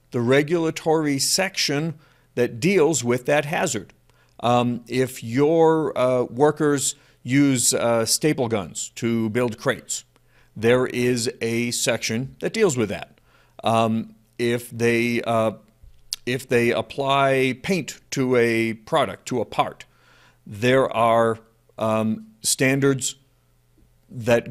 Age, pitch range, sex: 50-69, 110-135 Hz, male